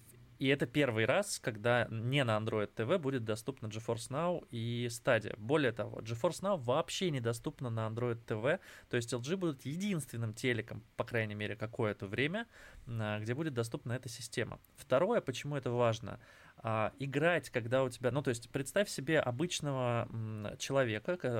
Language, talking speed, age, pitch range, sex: Russian, 155 wpm, 20-39, 115-145 Hz, male